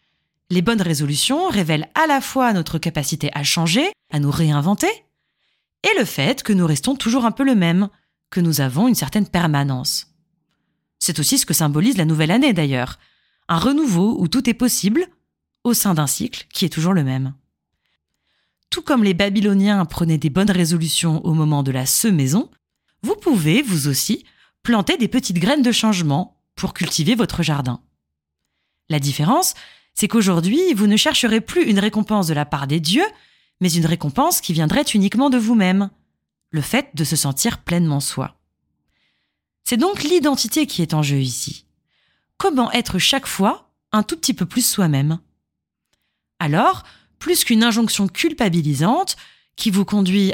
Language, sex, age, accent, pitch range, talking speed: French, female, 30-49, French, 155-235 Hz, 165 wpm